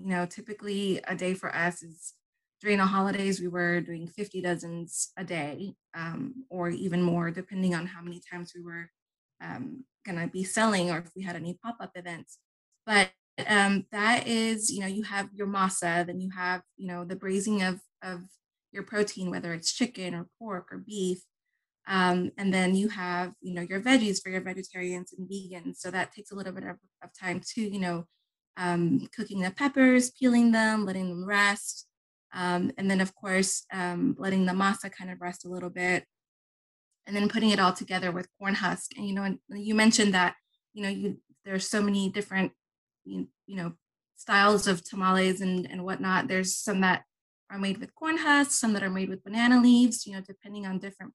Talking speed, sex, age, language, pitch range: 200 wpm, female, 20-39, English, 180-205 Hz